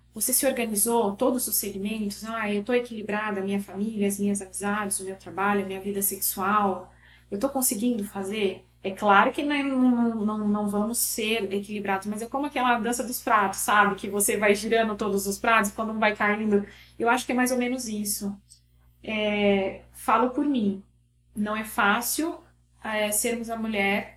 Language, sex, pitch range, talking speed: Portuguese, female, 195-235 Hz, 175 wpm